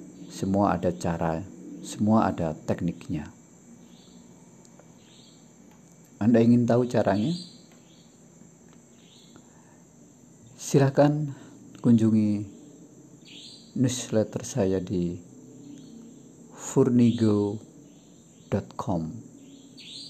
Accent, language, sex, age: native, Indonesian, male, 50-69